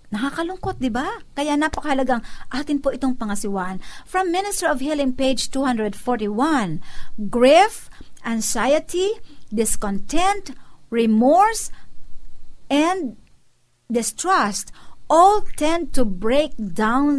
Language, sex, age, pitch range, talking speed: Filipino, female, 50-69, 220-285 Hz, 90 wpm